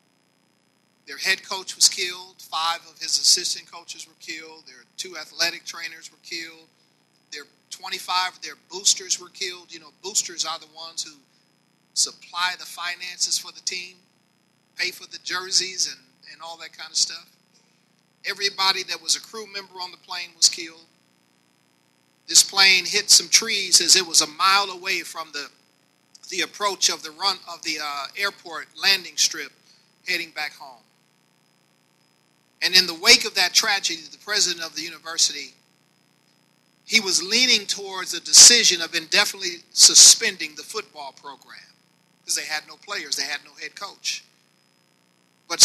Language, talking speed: English, 160 wpm